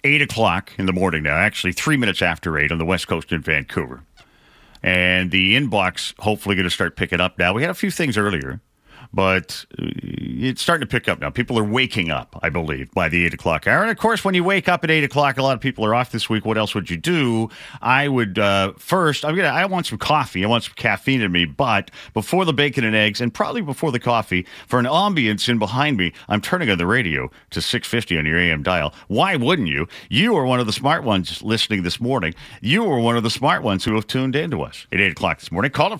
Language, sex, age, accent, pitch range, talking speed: English, male, 40-59, American, 95-140 Hz, 255 wpm